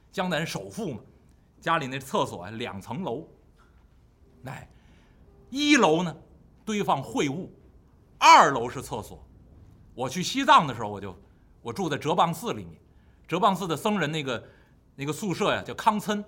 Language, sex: Chinese, male